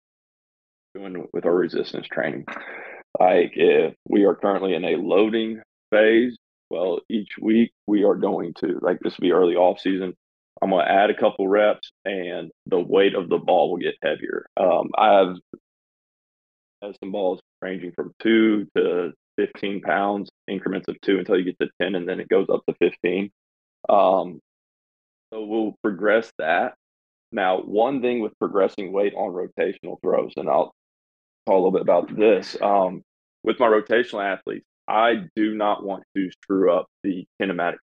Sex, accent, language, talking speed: male, American, English, 165 wpm